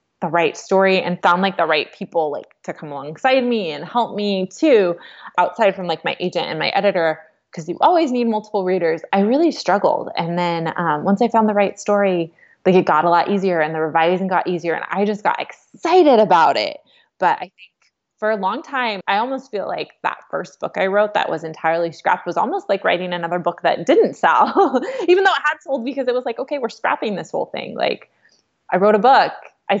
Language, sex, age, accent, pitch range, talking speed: English, female, 20-39, American, 170-225 Hz, 225 wpm